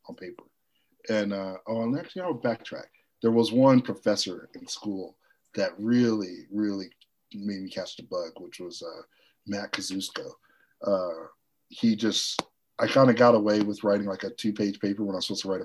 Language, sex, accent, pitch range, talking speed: English, male, American, 100-125 Hz, 185 wpm